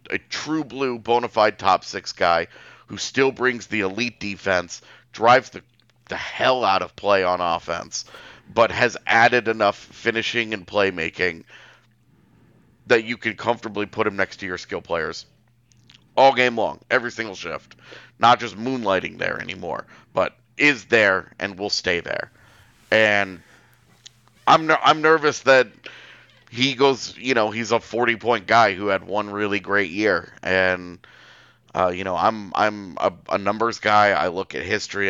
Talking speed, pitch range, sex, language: 155 wpm, 100-120 Hz, male, English